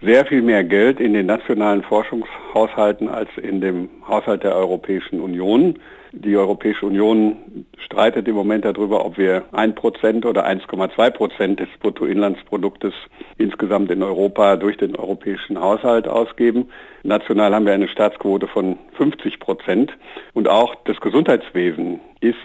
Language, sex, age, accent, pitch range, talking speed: German, male, 60-79, German, 105-120 Hz, 135 wpm